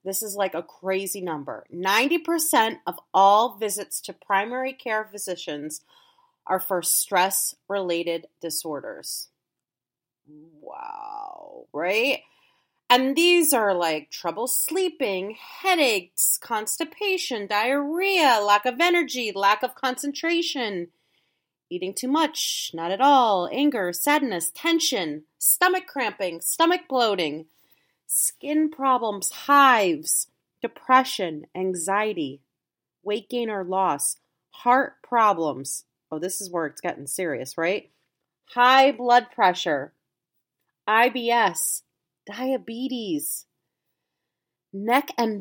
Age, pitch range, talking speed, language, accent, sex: 30-49, 185-290 Hz, 100 wpm, English, American, female